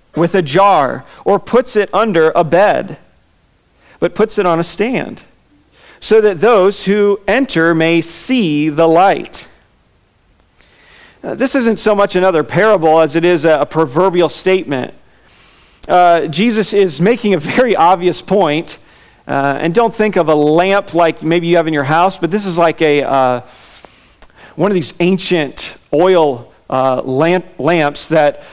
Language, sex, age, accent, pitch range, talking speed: English, male, 40-59, American, 150-180 Hz, 160 wpm